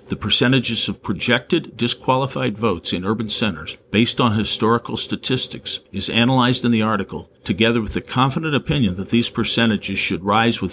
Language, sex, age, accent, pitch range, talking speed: English, male, 50-69, American, 95-120 Hz, 160 wpm